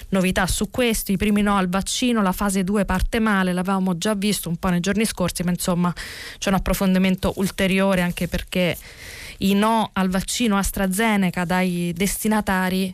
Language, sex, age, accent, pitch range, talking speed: Italian, female, 20-39, native, 175-220 Hz, 165 wpm